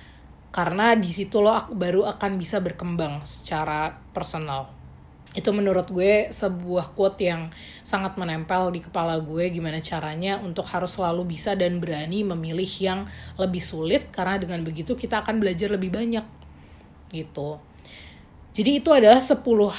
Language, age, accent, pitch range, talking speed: Indonesian, 30-49, native, 170-205 Hz, 140 wpm